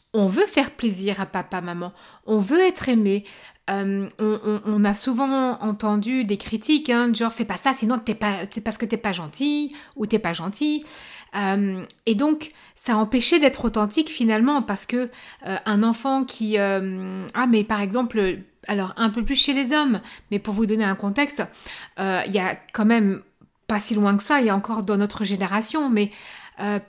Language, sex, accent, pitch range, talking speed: French, female, French, 205-265 Hz, 205 wpm